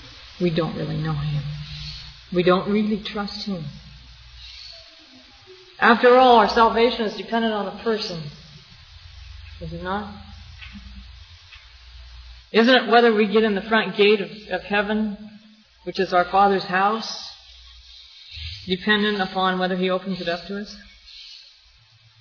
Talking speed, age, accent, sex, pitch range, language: 130 wpm, 40-59, American, female, 140-215 Hz, English